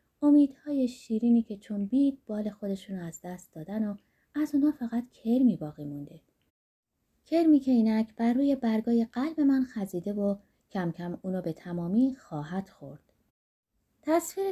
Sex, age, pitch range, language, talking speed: female, 20-39, 185-255 Hz, Persian, 145 wpm